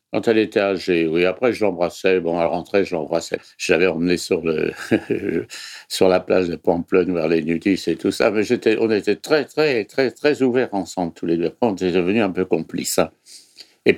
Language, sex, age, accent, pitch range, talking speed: French, male, 60-79, French, 85-110 Hz, 205 wpm